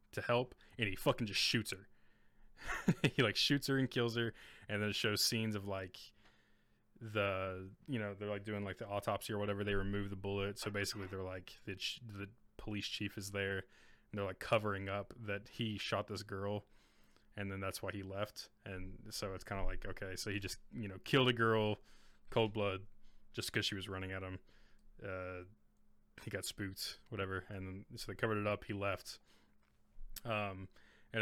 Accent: American